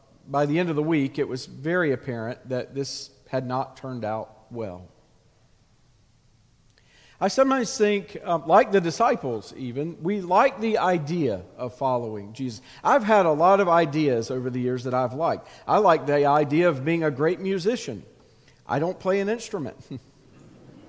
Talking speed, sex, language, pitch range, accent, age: 165 wpm, male, English, 130-200 Hz, American, 50-69